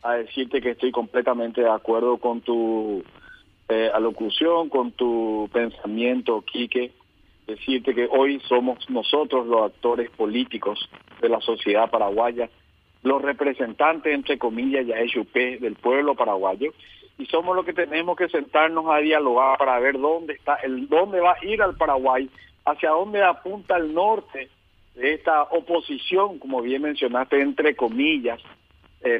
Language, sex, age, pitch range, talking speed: Spanish, male, 50-69, 120-145 Hz, 145 wpm